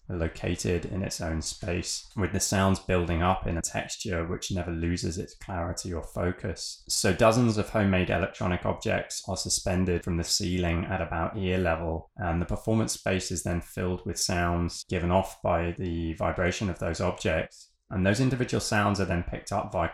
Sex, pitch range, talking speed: male, 85-100 Hz, 185 wpm